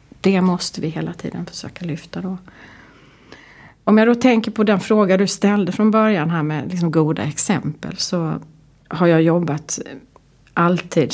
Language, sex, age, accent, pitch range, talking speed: Swedish, female, 30-49, native, 155-185 Hz, 150 wpm